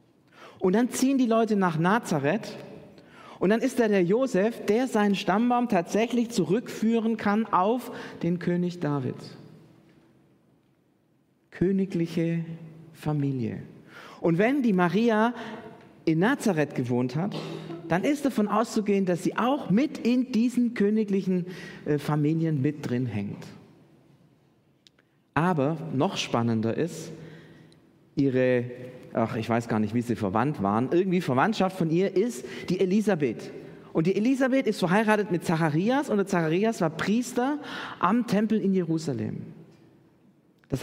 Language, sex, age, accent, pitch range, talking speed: German, male, 40-59, German, 155-220 Hz, 125 wpm